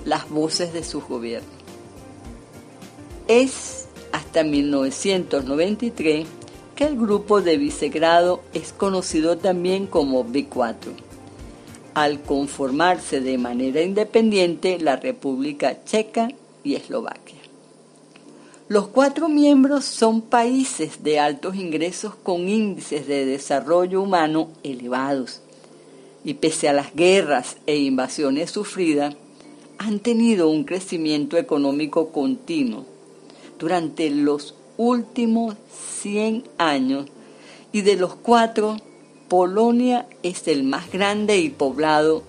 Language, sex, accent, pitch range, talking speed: Spanish, female, American, 145-215 Hz, 100 wpm